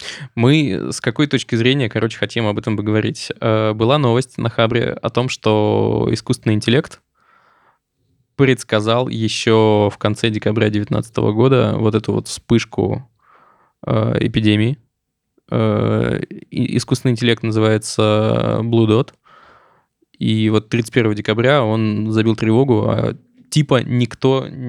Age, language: 20-39, Russian